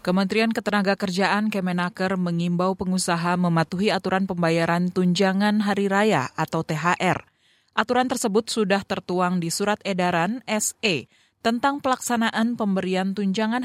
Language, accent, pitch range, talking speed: Indonesian, native, 150-200 Hz, 110 wpm